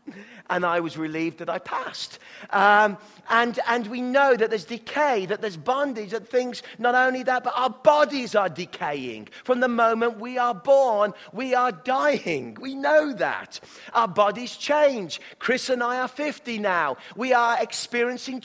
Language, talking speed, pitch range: English, 170 wpm, 195-250 Hz